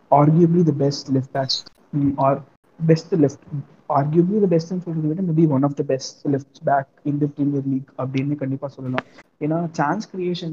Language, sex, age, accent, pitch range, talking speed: Tamil, male, 20-39, native, 135-155 Hz, 190 wpm